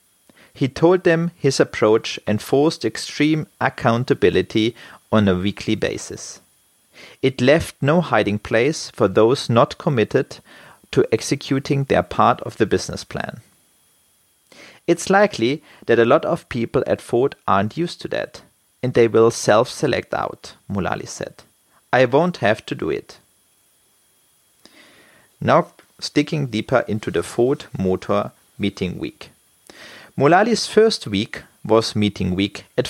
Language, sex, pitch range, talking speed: English, male, 110-155 Hz, 130 wpm